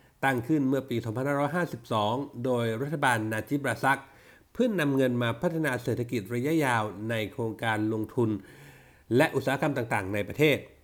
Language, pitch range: Thai, 115-160 Hz